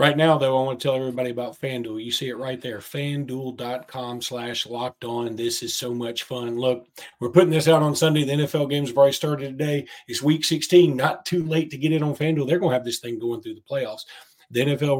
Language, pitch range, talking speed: English, 125-155 Hz, 245 wpm